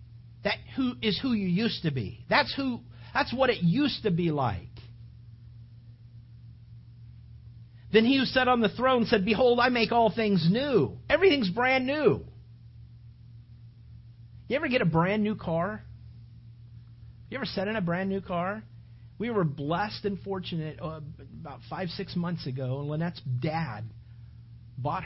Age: 50-69